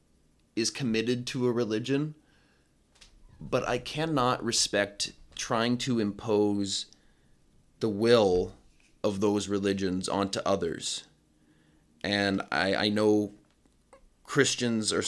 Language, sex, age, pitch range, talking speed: English, male, 30-49, 100-120 Hz, 100 wpm